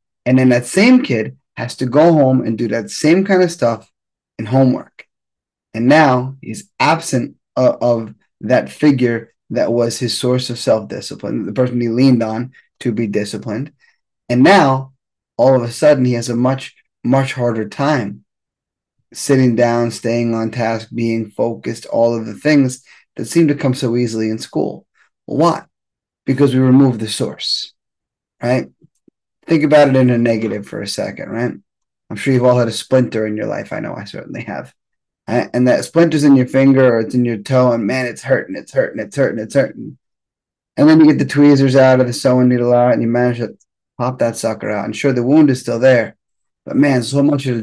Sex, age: male, 20-39